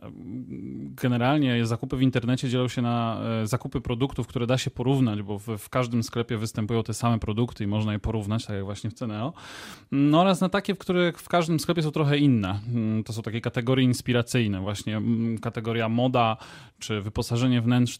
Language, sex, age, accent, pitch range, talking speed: Polish, male, 20-39, native, 115-135 Hz, 175 wpm